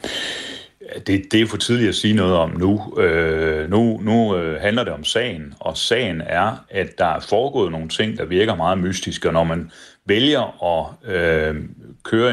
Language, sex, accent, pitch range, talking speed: Danish, male, native, 85-110 Hz, 170 wpm